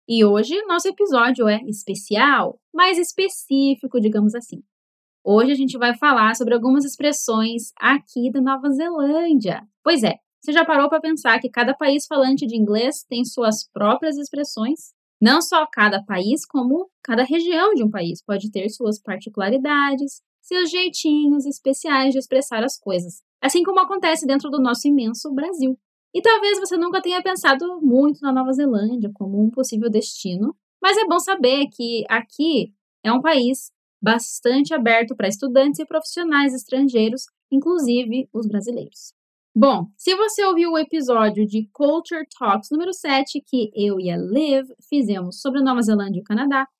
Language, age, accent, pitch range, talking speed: Portuguese, 10-29, Brazilian, 225-310 Hz, 160 wpm